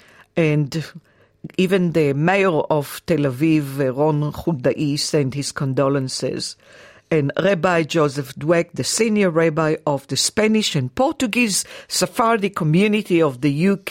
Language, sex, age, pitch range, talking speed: Hebrew, female, 50-69, 150-195 Hz, 125 wpm